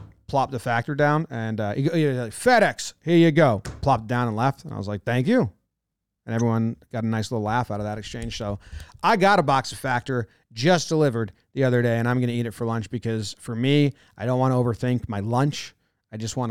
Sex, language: male, English